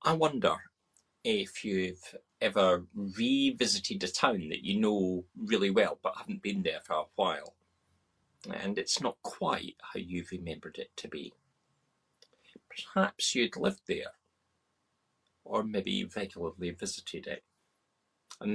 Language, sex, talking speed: English, male, 135 wpm